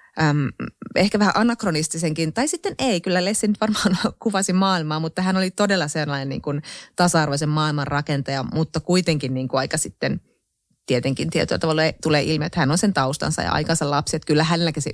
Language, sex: Finnish, female